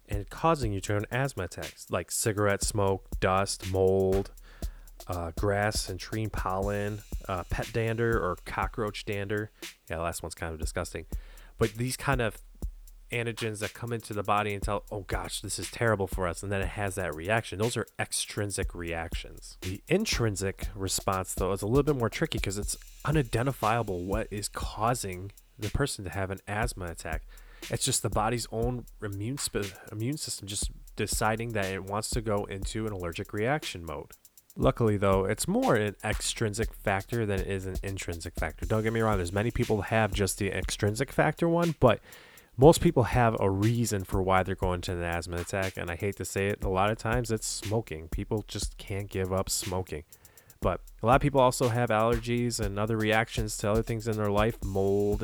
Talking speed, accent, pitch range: 195 wpm, American, 95-115 Hz